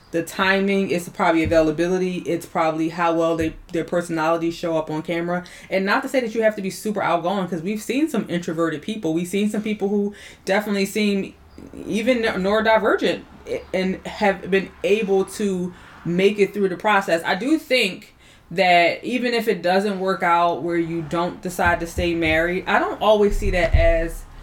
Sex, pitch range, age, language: female, 165-200 Hz, 20-39, English